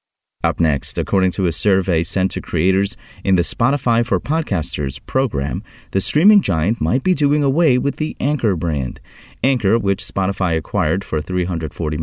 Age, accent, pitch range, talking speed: 30-49, American, 80-115 Hz, 160 wpm